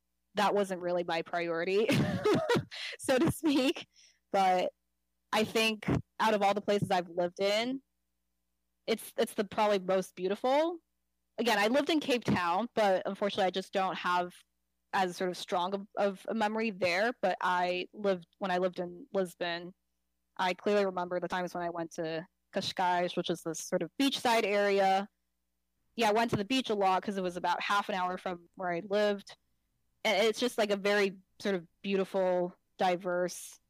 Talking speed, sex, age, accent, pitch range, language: 180 wpm, female, 20-39, American, 175-205 Hz, English